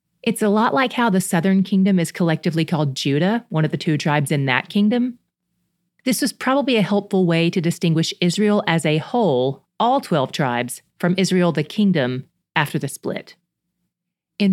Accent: American